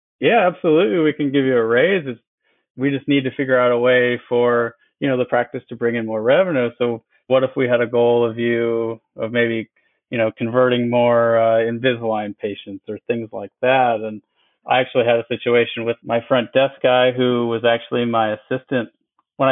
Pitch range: 115-125 Hz